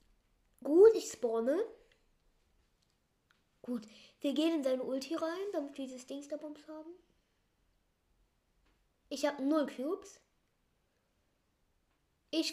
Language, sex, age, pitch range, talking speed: German, female, 10-29, 250-320 Hz, 100 wpm